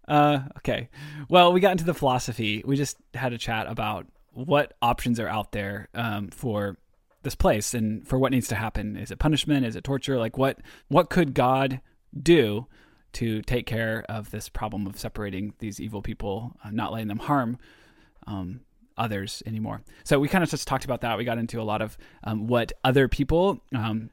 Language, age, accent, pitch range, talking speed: English, 20-39, American, 110-140 Hz, 195 wpm